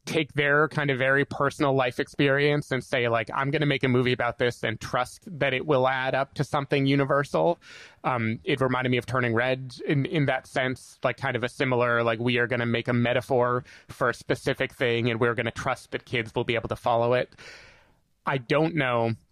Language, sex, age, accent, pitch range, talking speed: English, male, 30-49, American, 120-140 Hz, 225 wpm